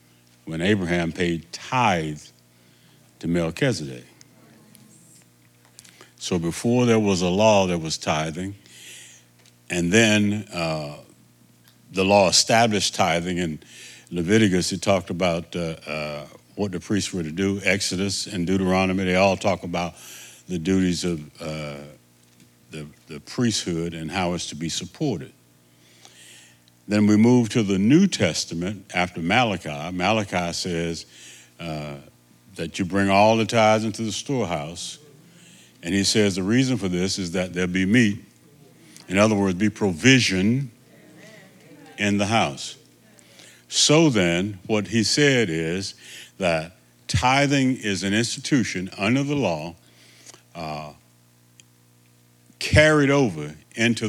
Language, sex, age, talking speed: English, male, 60-79, 125 wpm